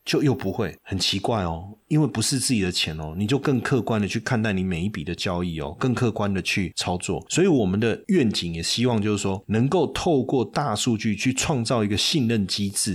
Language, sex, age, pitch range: Chinese, male, 30-49, 100-125 Hz